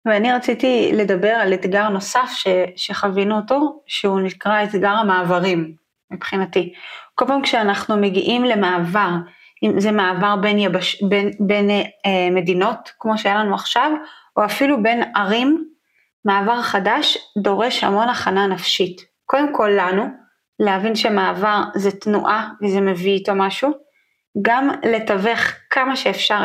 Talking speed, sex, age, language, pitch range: 130 wpm, female, 30-49, Hebrew, 200-235 Hz